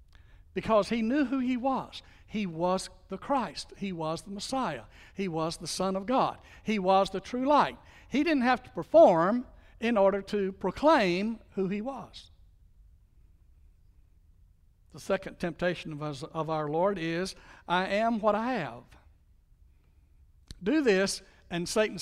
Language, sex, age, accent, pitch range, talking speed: English, male, 60-79, American, 130-205 Hz, 145 wpm